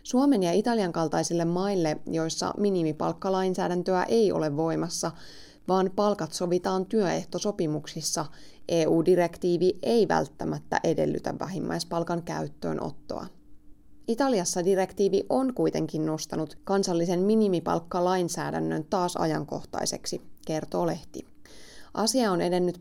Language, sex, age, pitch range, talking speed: Finnish, female, 20-39, 160-200 Hz, 90 wpm